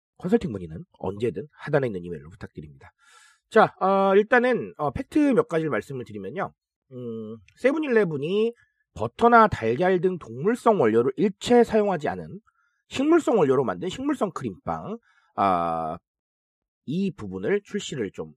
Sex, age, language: male, 40-59, Korean